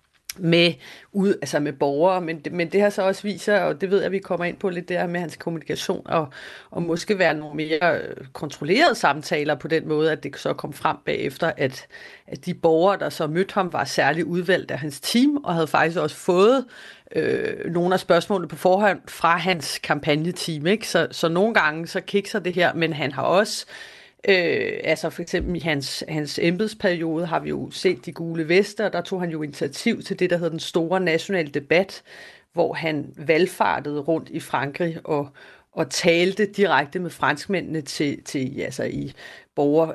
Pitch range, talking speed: 150-185 Hz, 195 wpm